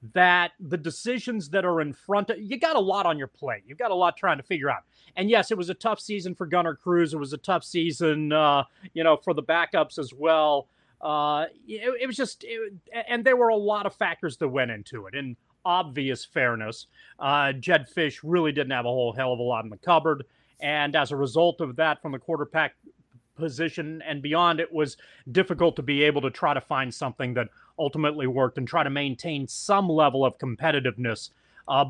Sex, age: male, 30-49